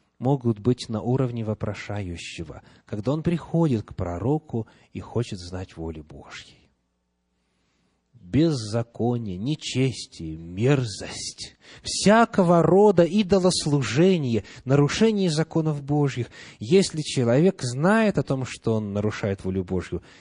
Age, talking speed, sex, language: 30-49, 100 wpm, male, English